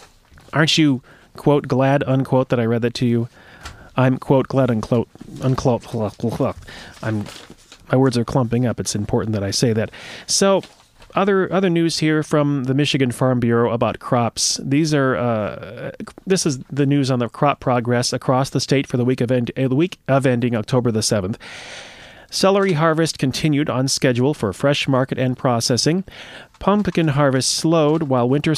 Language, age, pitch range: English, 30-49, 120-150 Hz